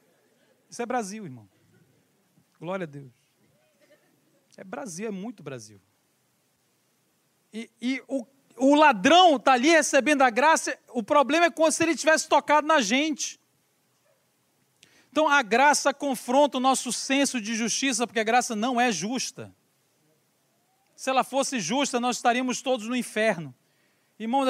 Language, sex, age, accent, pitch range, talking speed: Portuguese, male, 40-59, Brazilian, 210-265 Hz, 140 wpm